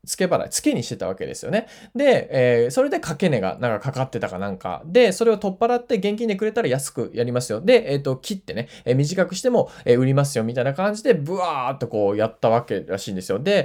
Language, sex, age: Japanese, male, 20-39